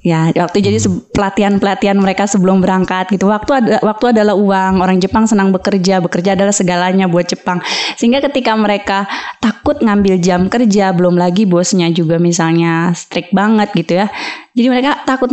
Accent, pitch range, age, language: native, 170-210 Hz, 20-39, Indonesian